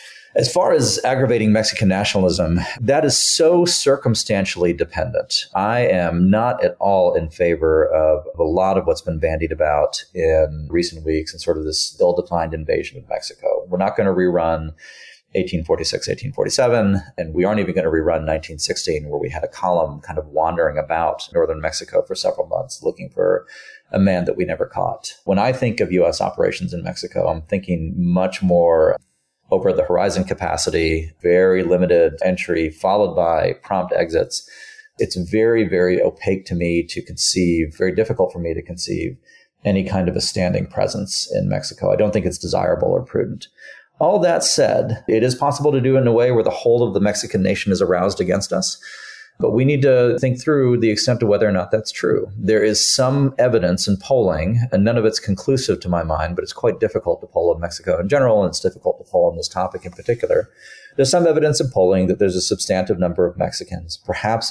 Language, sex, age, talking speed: English, male, 40-59, 195 wpm